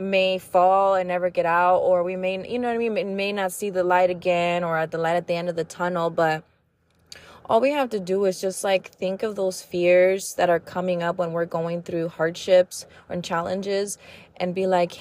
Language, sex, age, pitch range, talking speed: English, female, 20-39, 170-195 Hz, 230 wpm